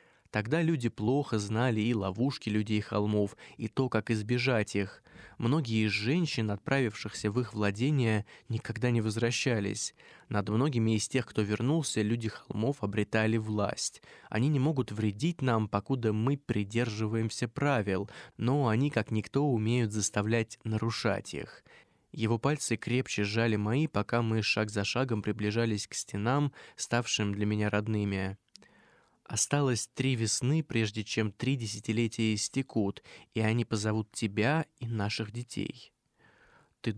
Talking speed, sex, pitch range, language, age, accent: 135 wpm, male, 105-125 Hz, Russian, 20-39, native